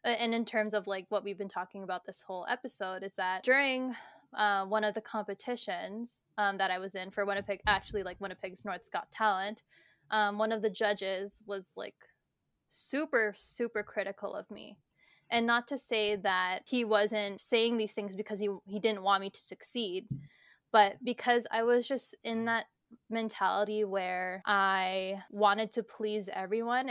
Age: 10-29